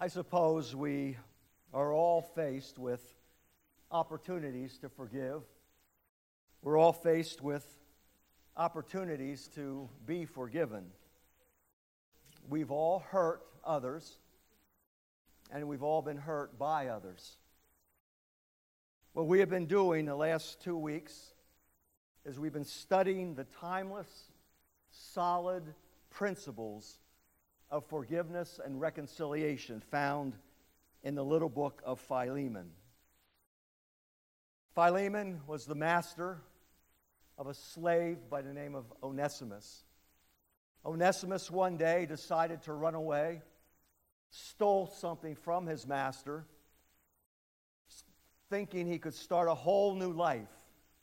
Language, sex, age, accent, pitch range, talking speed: English, male, 50-69, American, 100-165 Hz, 105 wpm